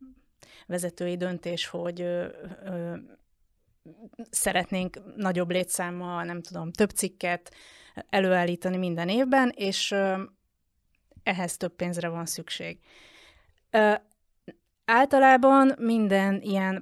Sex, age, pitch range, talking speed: female, 30-49, 175-210 Hz, 95 wpm